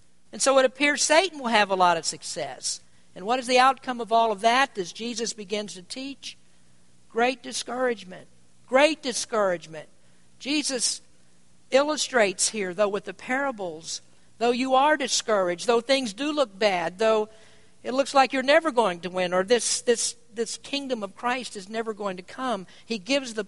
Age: 50-69